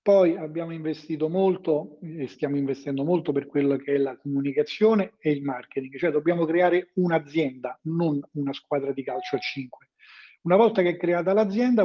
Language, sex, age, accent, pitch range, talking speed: Italian, male, 40-59, native, 140-175 Hz, 170 wpm